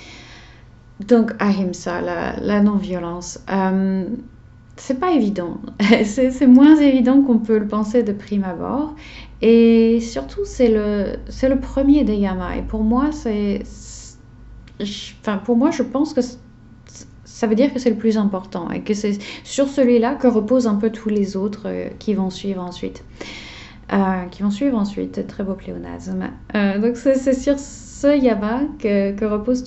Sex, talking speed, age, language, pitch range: female, 170 wpm, 30-49, French, 190-240 Hz